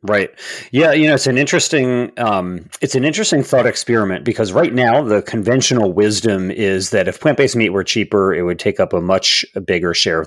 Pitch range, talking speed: 90-125 Hz, 205 wpm